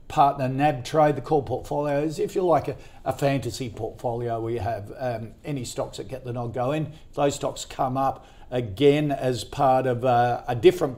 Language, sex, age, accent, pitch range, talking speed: English, male, 50-69, Australian, 120-140 Hz, 195 wpm